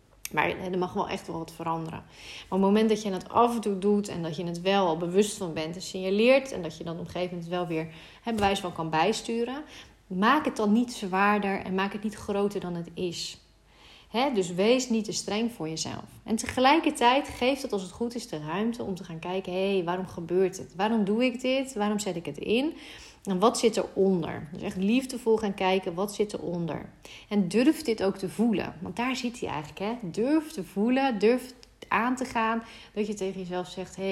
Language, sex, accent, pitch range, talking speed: Dutch, female, Dutch, 180-225 Hz, 225 wpm